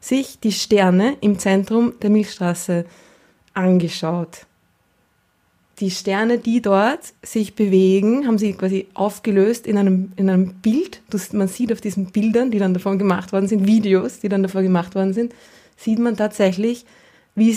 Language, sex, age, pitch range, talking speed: German, female, 20-39, 185-225 Hz, 155 wpm